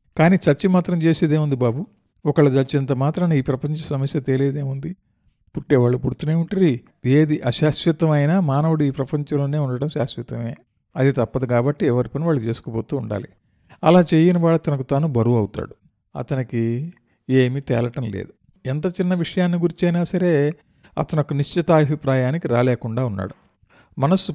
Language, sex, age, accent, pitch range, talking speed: Telugu, male, 50-69, native, 125-160 Hz, 125 wpm